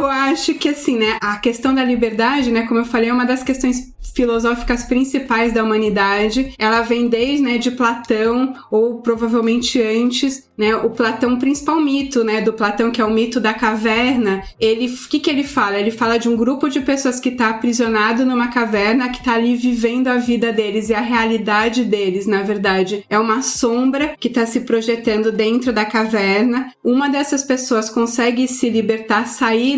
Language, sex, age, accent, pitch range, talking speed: Portuguese, female, 20-39, Brazilian, 225-255 Hz, 185 wpm